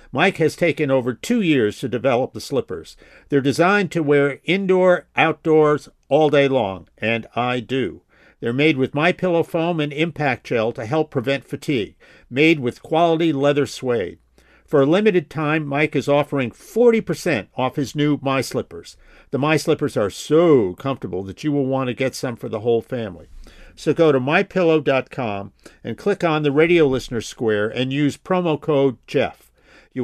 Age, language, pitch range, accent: 50-69, English, 125-160 Hz, American